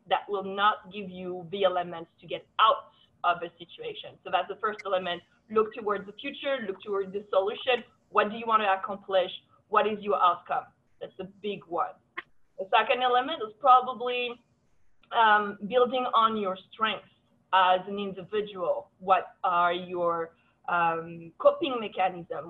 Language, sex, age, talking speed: English, female, 20-39, 155 wpm